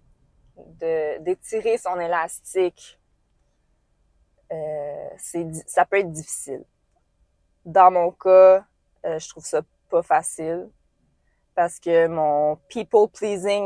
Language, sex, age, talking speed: French, female, 20-39, 115 wpm